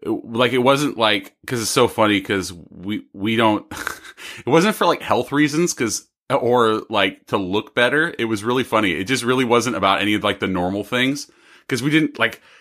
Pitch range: 100-125 Hz